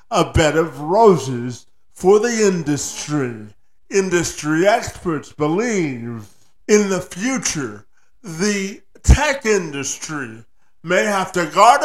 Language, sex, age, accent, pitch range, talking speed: English, male, 50-69, American, 130-205 Hz, 100 wpm